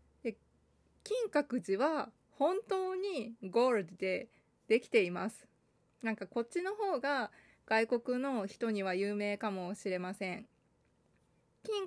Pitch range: 205-275 Hz